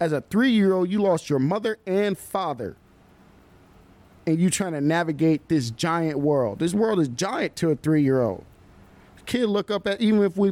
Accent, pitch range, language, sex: American, 120-165 Hz, English, male